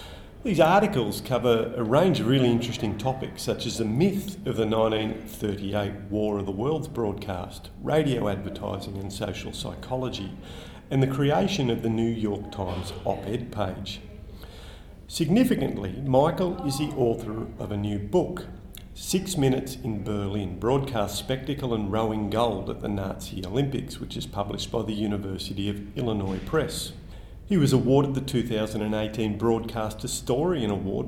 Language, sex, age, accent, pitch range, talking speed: English, male, 40-59, Australian, 100-130 Hz, 145 wpm